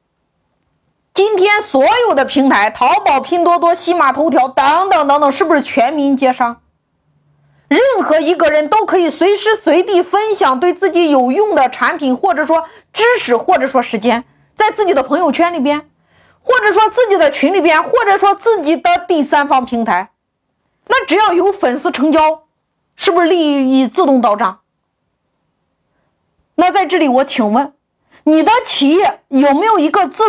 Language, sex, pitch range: Chinese, female, 265-365 Hz